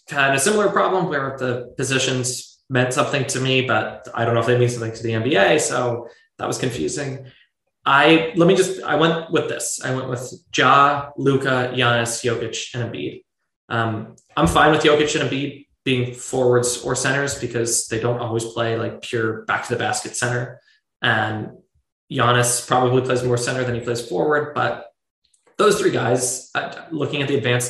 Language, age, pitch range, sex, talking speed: English, 20-39, 120-145 Hz, male, 180 wpm